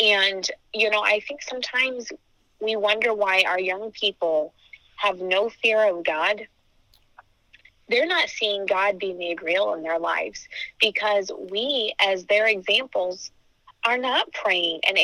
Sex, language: female, English